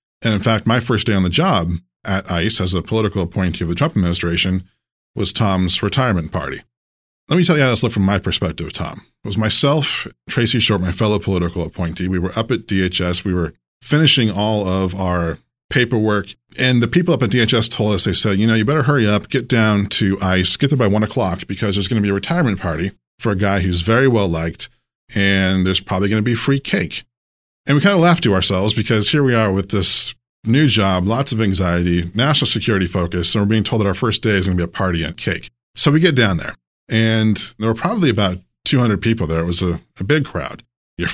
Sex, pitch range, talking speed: male, 90-115 Hz, 235 wpm